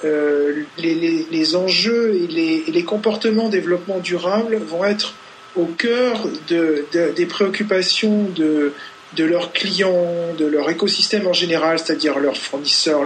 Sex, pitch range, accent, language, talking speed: male, 160-205 Hz, French, French, 145 wpm